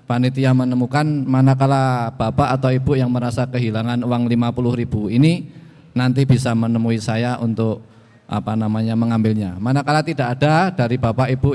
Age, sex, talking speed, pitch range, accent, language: 20-39, male, 135 wpm, 100-125 Hz, native, Indonesian